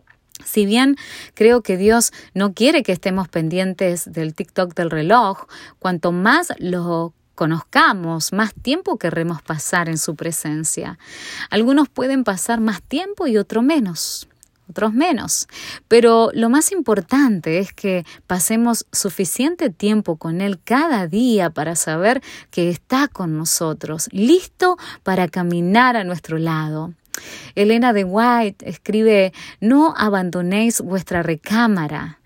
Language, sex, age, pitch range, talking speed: Spanish, female, 20-39, 175-245 Hz, 125 wpm